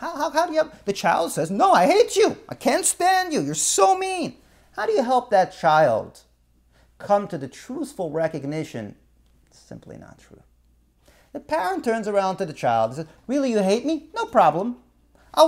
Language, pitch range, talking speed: English, 180-280 Hz, 200 wpm